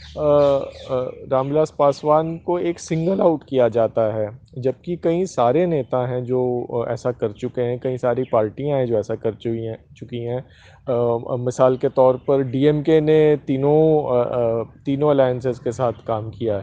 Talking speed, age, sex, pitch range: 155 wpm, 30-49, male, 120-145 Hz